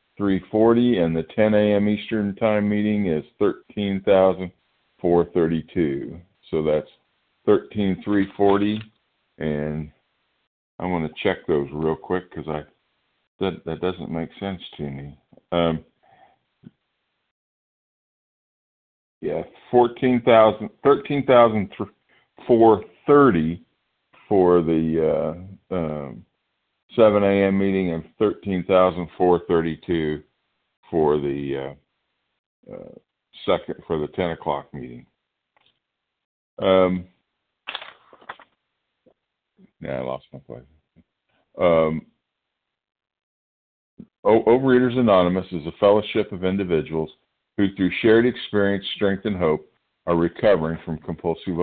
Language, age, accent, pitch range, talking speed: English, 50-69, American, 80-105 Hz, 100 wpm